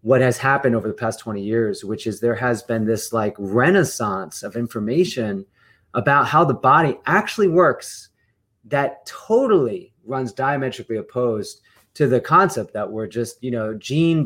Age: 30-49